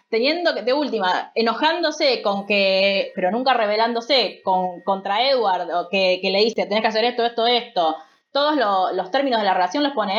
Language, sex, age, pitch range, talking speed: Spanish, female, 20-39, 210-295 Hz, 195 wpm